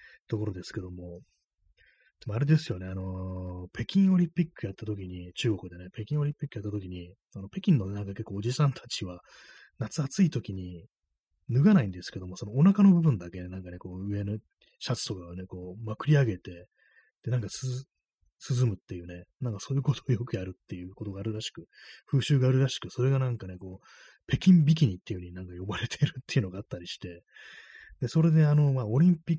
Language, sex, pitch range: Japanese, male, 95-140 Hz